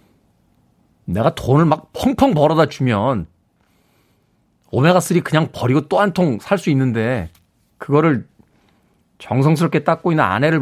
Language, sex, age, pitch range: Korean, male, 40-59, 105-155 Hz